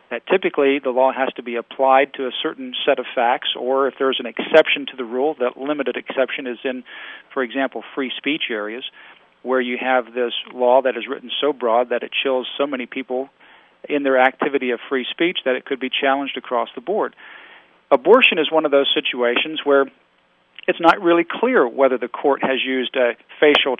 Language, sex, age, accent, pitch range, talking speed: English, male, 40-59, American, 125-140 Hz, 200 wpm